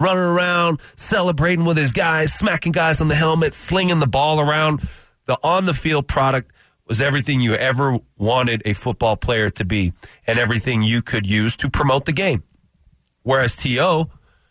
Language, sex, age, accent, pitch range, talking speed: English, male, 30-49, American, 105-145 Hz, 165 wpm